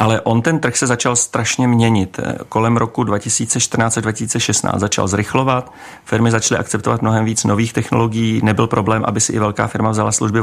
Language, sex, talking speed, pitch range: Czech, male, 175 wpm, 110-125 Hz